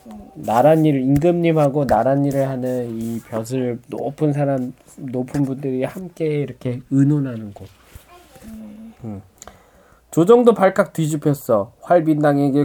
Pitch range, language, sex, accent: 125-185 Hz, Korean, male, native